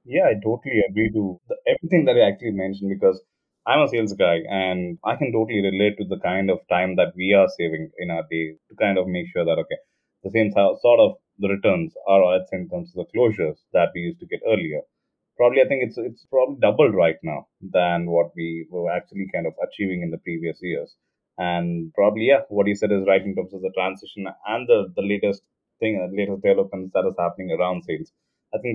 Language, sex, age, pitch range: English, male, 20-39, 90-140 Hz